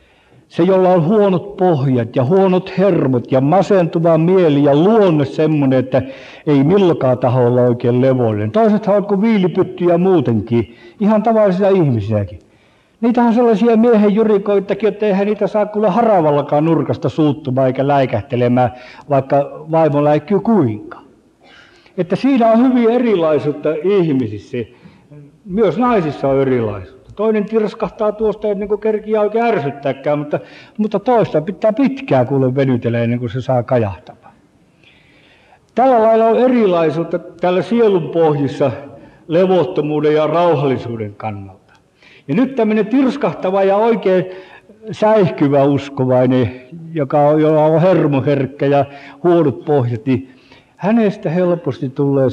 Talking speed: 120 wpm